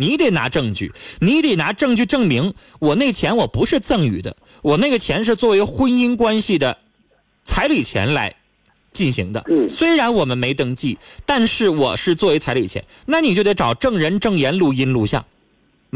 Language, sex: Chinese, male